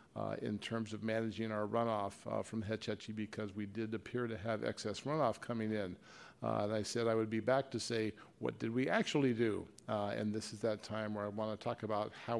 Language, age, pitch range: English, 50-69, 110-125 Hz